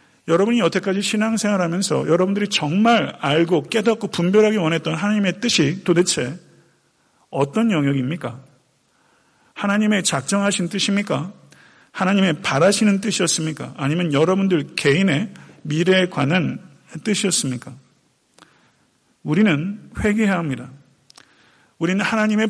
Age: 40-59